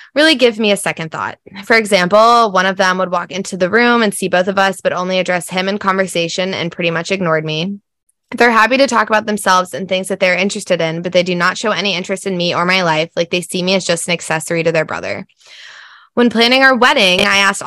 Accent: American